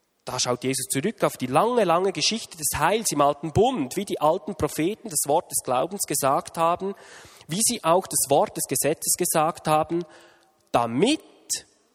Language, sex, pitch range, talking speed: German, male, 140-195 Hz, 170 wpm